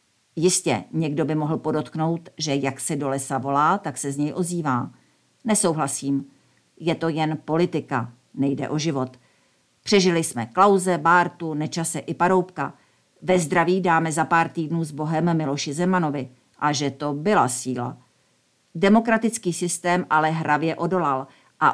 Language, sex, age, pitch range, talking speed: Czech, female, 50-69, 145-180 Hz, 145 wpm